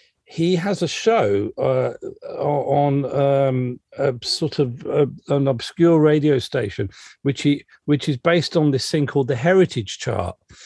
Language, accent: English, British